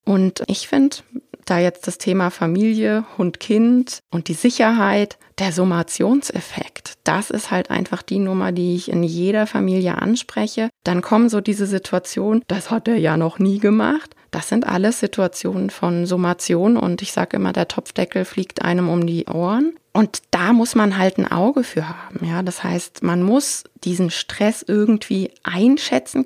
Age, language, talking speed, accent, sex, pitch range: 20-39, German, 165 wpm, German, female, 175-220 Hz